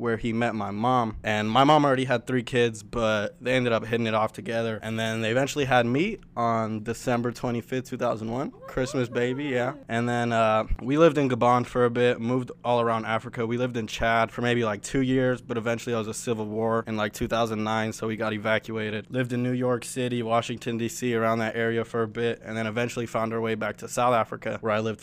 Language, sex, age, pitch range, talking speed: English, male, 20-39, 110-125 Hz, 230 wpm